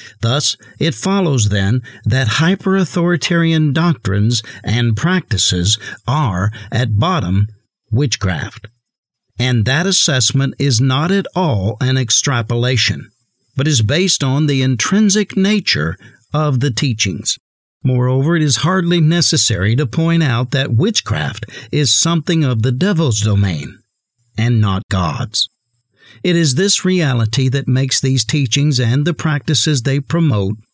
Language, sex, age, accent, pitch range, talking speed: English, male, 60-79, American, 115-160 Hz, 125 wpm